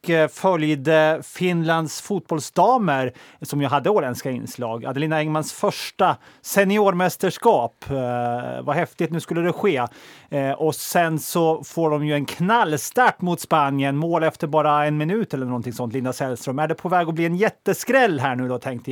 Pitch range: 130-165 Hz